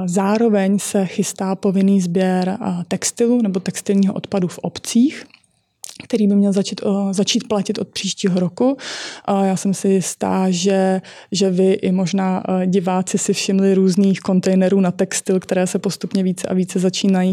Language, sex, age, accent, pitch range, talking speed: Czech, female, 20-39, native, 185-205 Hz, 150 wpm